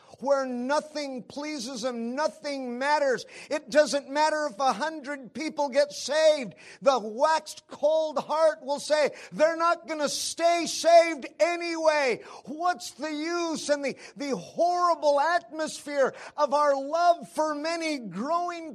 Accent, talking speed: American, 135 wpm